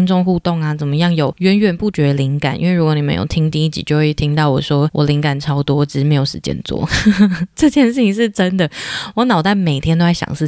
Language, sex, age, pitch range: Chinese, female, 20-39, 145-175 Hz